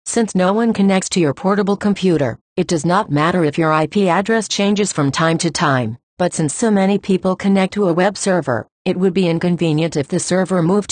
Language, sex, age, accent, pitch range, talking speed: English, female, 50-69, American, 160-195 Hz, 215 wpm